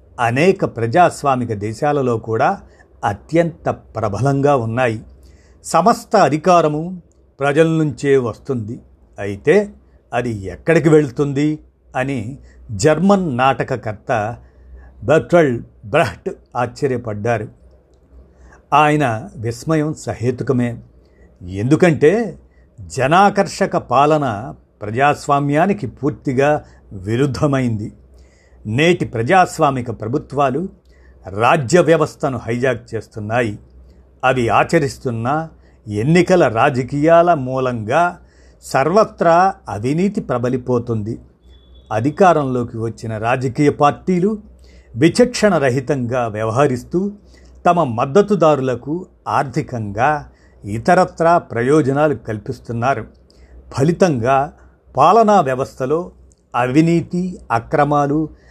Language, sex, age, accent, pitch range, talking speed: Telugu, male, 50-69, native, 115-160 Hz, 65 wpm